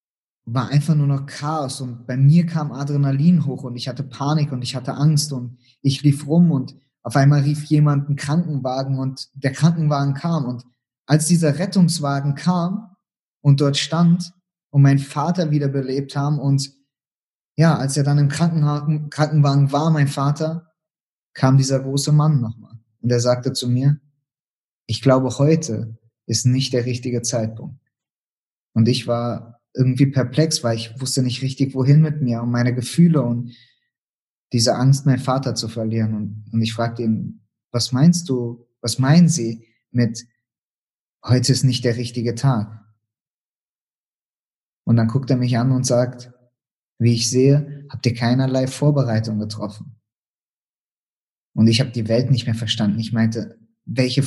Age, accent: 20-39, German